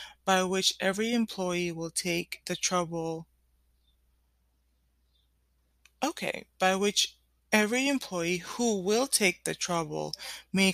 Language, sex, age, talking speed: English, female, 20-39, 105 wpm